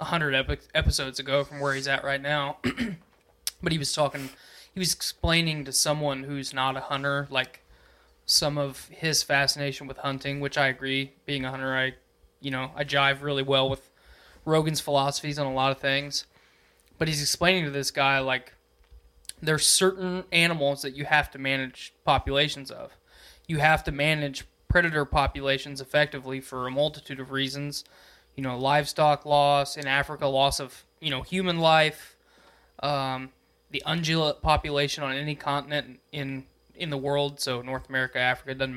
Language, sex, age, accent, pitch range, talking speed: English, male, 20-39, American, 130-150 Hz, 165 wpm